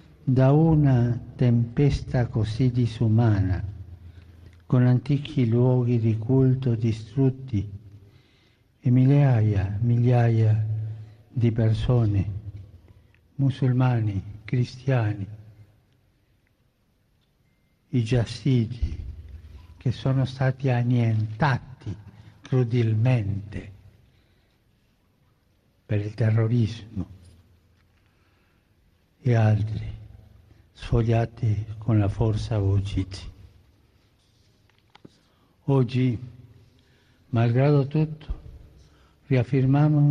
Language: German